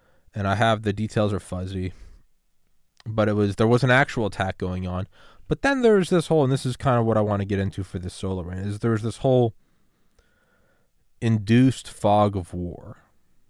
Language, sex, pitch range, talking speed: English, male, 90-115 Hz, 195 wpm